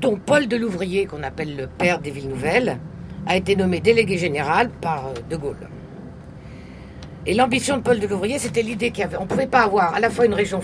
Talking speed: 210 wpm